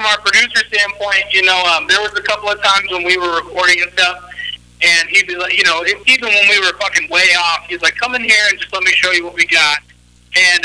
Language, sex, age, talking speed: English, male, 30-49, 265 wpm